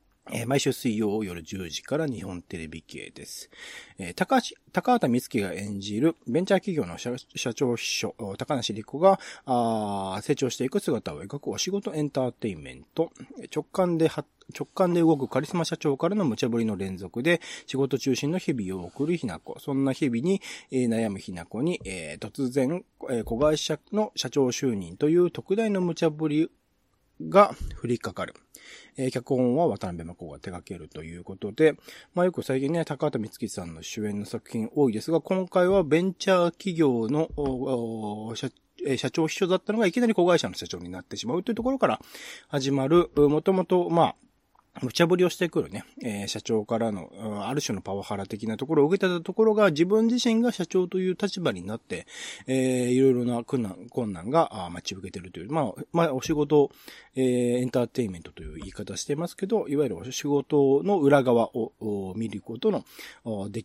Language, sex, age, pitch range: Japanese, male, 40-59, 115-170 Hz